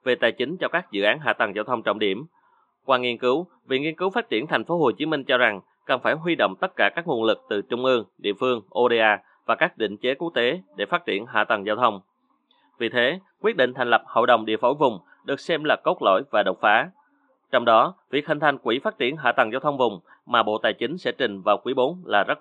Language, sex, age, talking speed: Vietnamese, male, 20-39, 265 wpm